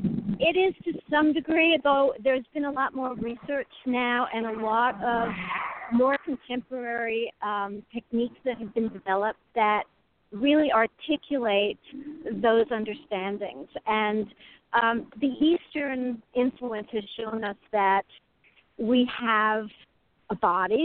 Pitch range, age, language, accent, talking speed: 205-255 Hz, 50-69, English, American, 125 wpm